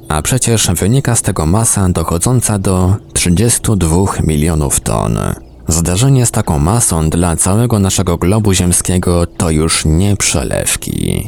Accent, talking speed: native, 130 wpm